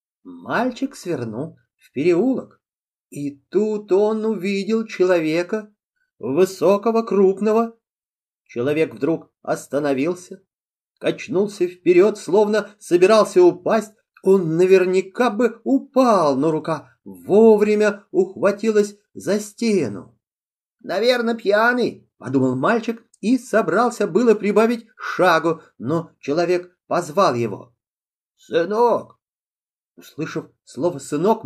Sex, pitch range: male, 160-225 Hz